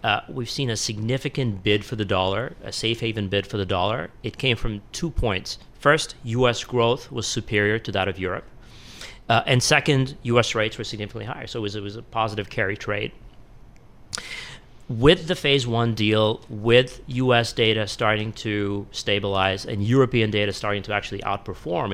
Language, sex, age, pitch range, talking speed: English, male, 30-49, 100-115 Hz, 175 wpm